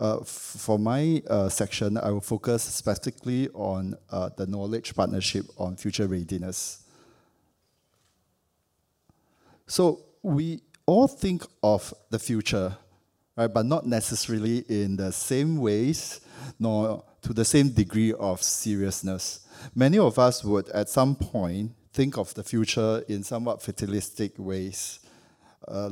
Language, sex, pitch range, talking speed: English, male, 100-120 Hz, 130 wpm